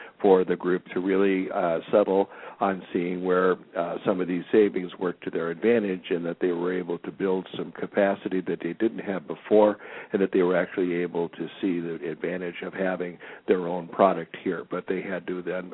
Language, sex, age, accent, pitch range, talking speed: English, male, 60-79, American, 90-100 Hz, 205 wpm